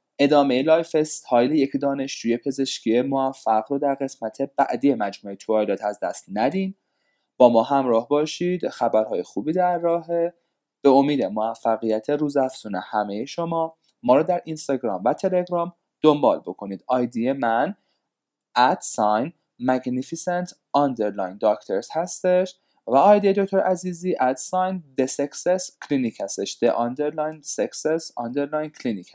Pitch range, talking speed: 115-170 Hz, 115 wpm